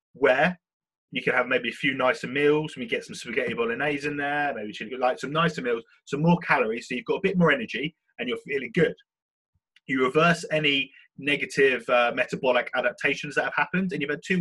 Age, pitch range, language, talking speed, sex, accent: 20-39, 145-185 Hz, English, 210 wpm, male, British